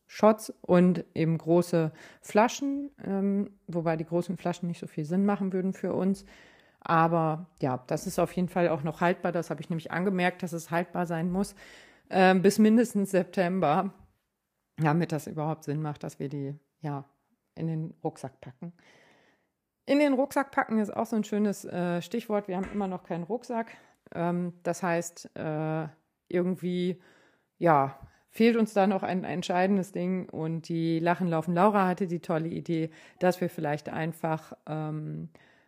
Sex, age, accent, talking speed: female, 40-59, German, 165 wpm